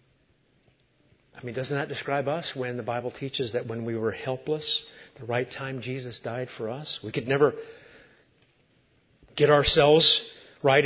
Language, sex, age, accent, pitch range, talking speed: English, male, 40-59, American, 135-190 Hz, 155 wpm